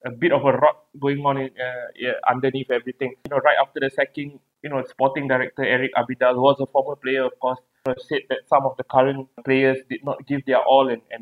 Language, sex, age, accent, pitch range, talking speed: English, male, 20-39, Malaysian, 125-140 Hz, 240 wpm